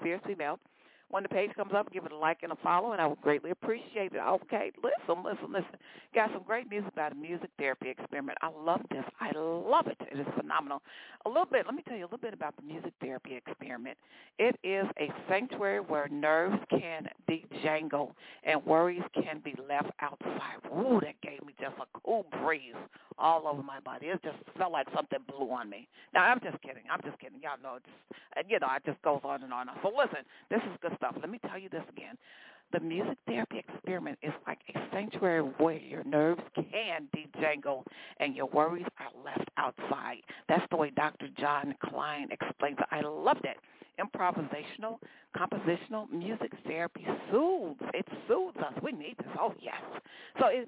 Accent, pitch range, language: American, 155-205 Hz, English